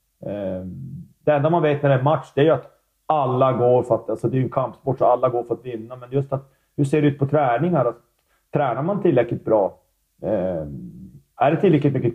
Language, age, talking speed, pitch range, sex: Swedish, 30-49, 235 wpm, 120-150 Hz, male